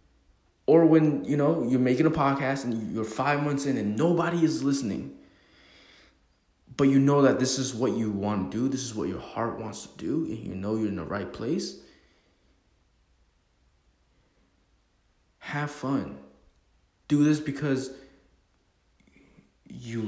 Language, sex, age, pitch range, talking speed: English, male, 20-39, 105-155 Hz, 155 wpm